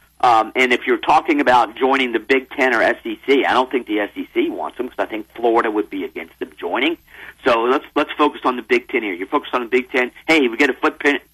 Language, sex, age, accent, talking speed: English, male, 40-59, American, 255 wpm